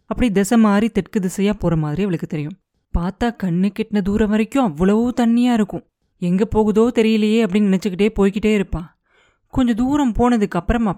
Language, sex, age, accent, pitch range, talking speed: Tamil, female, 20-39, native, 175-230 Hz, 155 wpm